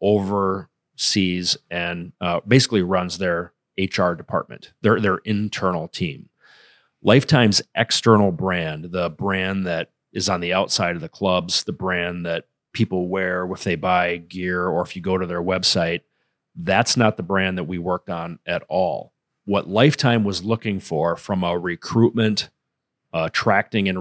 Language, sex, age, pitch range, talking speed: English, male, 30-49, 90-105 Hz, 155 wpm